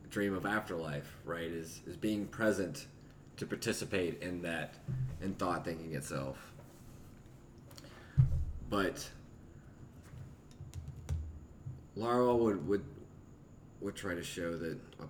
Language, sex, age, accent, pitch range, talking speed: English, male, 30-49, American, 80-105 Hz, 105 wpm